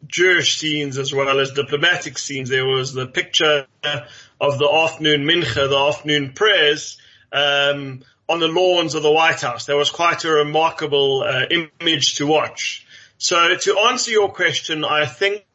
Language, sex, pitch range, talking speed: English, male, 145-190 Hz, 160 wpm